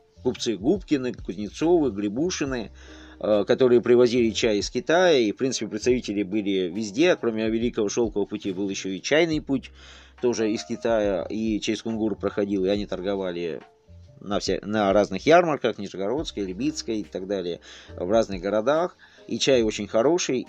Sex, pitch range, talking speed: male, 100-120 Hz, 145 wpm